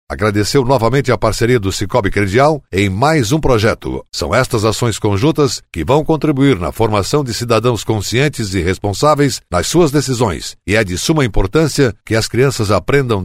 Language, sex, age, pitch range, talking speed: Portuguese, male, 60-79, 105-145 Hz, 170 wpm